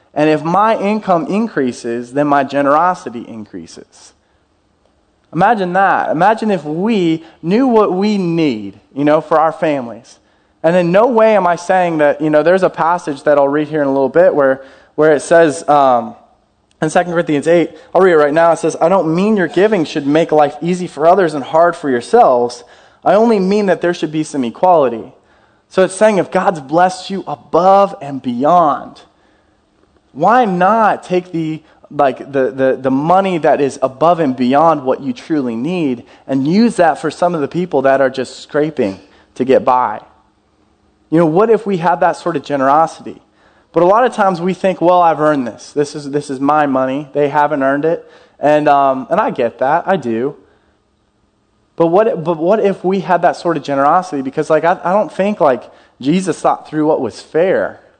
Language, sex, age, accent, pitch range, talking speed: English, male, 20-39, American, 140-180 Hz, 195 wpm